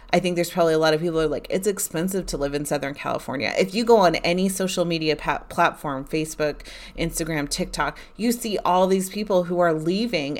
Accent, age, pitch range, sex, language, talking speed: American, 30-49, 150-185 Hz, female, English, 210 wpm